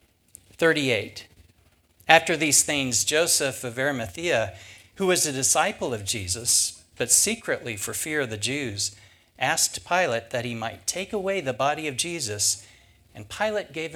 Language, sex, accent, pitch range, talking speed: English, male, American, 105-160 Hz, 145 wpm